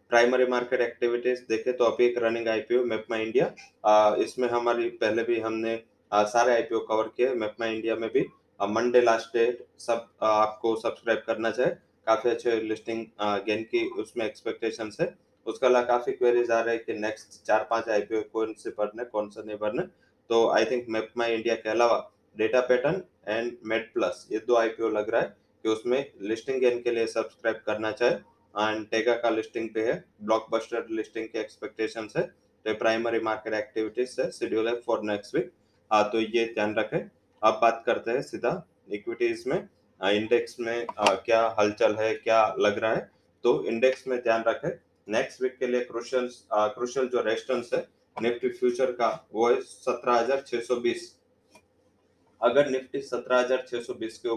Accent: Indian